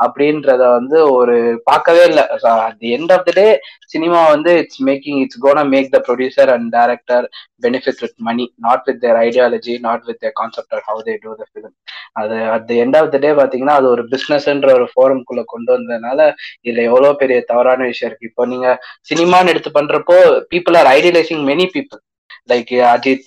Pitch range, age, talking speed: 125-180 Hz, 20-39, 165 wpm